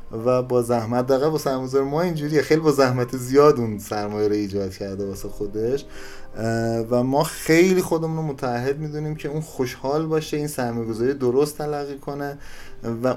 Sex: male